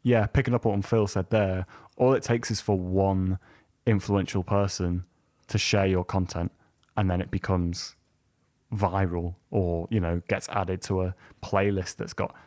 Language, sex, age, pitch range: English, male, 20-39, 95-110 Hz